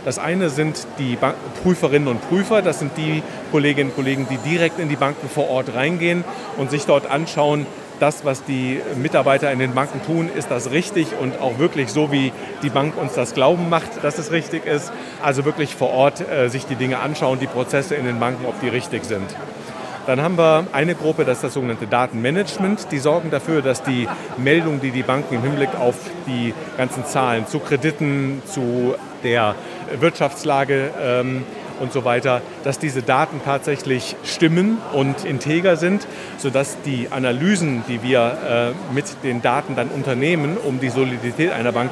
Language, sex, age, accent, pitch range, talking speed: German, male, 40-59, German, 130-160 Hz, 180 wpm